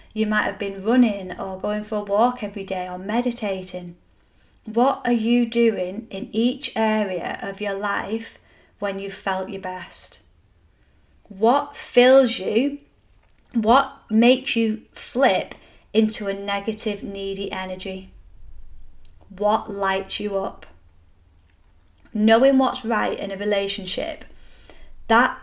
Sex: female